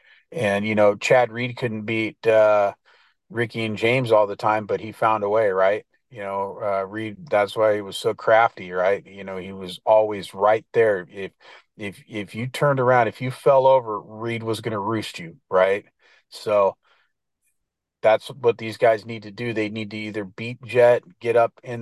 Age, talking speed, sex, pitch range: 30-49, 195 wpm, male, 105-120 Hz